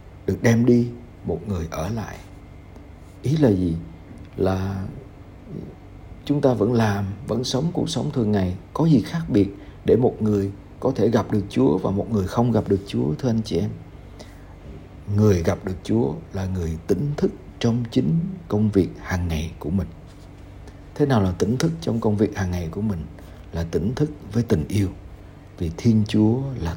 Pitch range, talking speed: 95-115 Hz, 185 wpm